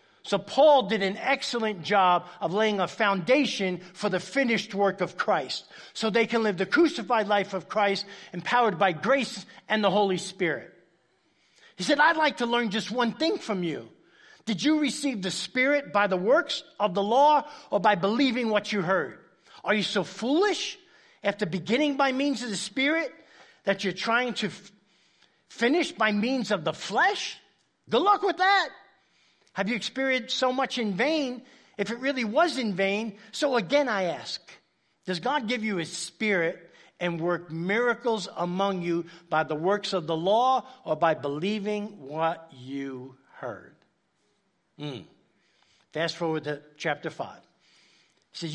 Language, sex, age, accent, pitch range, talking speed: English, male, 50-69, American, 185-250 Hz, 165 wpm